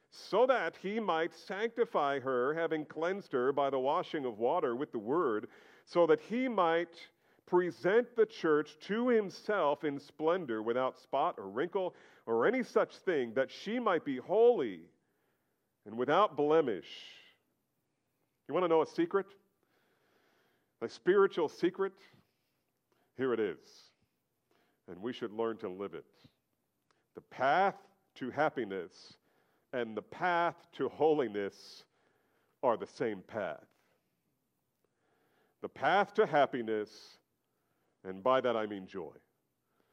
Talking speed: 130 wpm